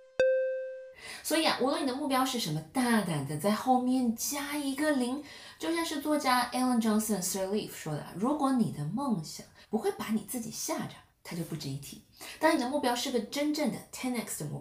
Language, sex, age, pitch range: Chinese, female, 20-39, 165-265 Hz